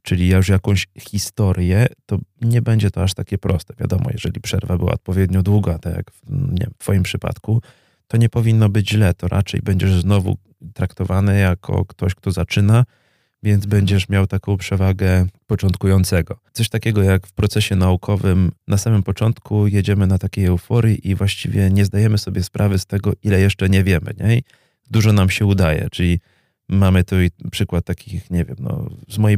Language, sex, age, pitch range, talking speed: Polish, male, 30-49, 95-110 Hz, 170 wpm